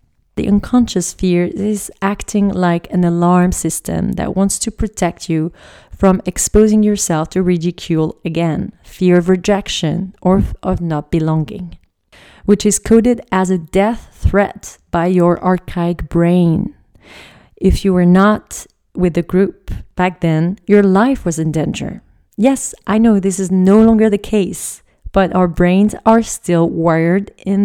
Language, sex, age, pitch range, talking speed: English, female, 30-49, 175-210 Hz, 150 wpm